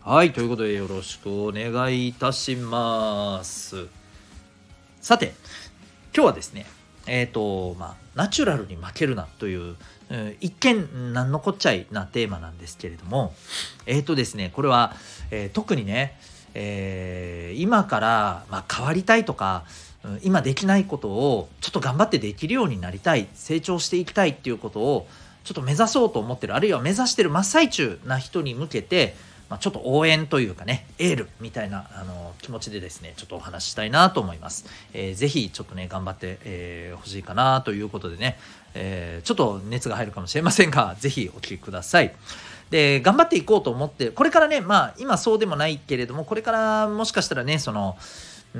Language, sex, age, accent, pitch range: Japanese, male, 40-59, native, 95-160 Hz